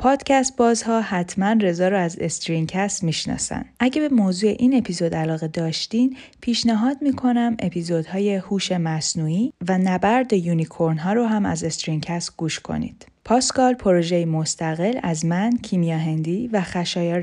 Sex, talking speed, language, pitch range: female, 130 wpm, Persian, 170-235 Hz